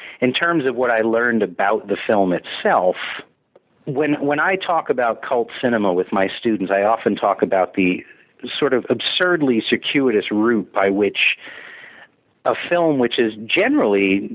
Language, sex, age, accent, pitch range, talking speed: English, male, 40-59, American, 95-115 Hz, 155 wpm